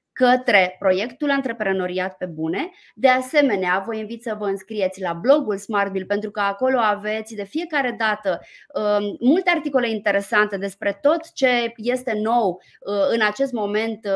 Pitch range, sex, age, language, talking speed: 200-260 Hz, female, 20-39, Romanian, 145 wpm